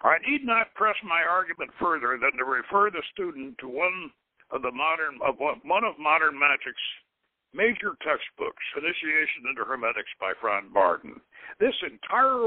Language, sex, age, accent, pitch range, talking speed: English, male, 60-79, American, 165-230 Hz, 155 wpm